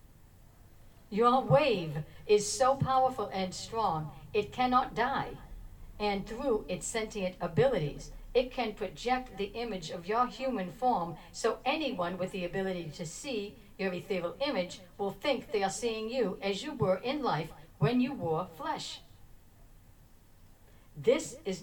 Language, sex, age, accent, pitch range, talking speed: English, female, 60-79, American, 160-230 Hz, 140 wpm